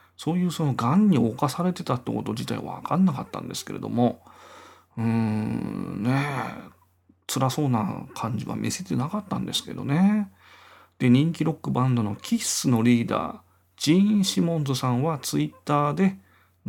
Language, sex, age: Japanese, male, 40-59